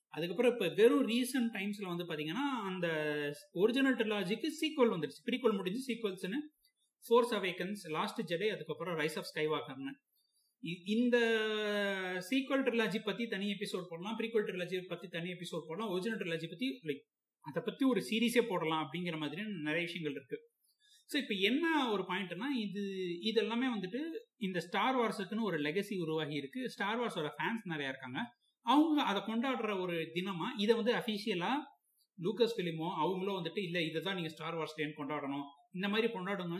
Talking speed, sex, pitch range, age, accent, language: 130 wpm, male, 165-235 Hz, 30-49, native, Tamil